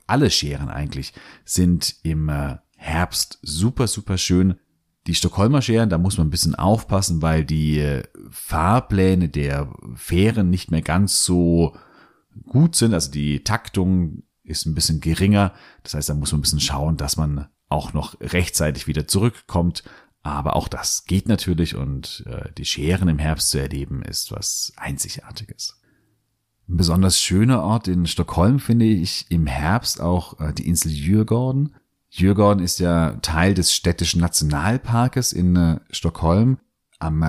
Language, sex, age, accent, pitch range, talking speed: German, male, 40-59, German, 75-105 Hz, 145 wpm